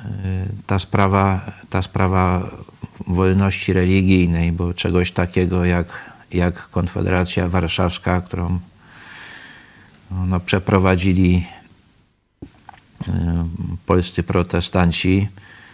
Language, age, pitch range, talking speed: Polish, 50-69, 85-95 Hz, 60 wpm